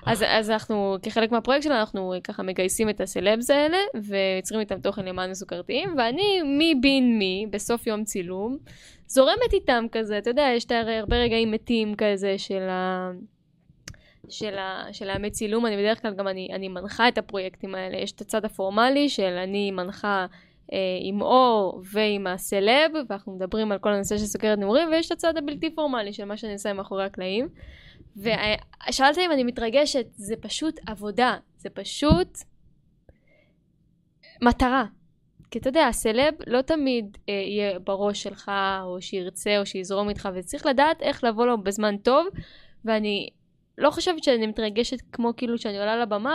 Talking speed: 155 wpm